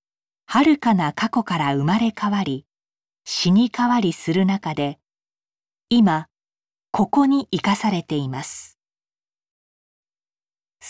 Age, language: 40-59, Japanese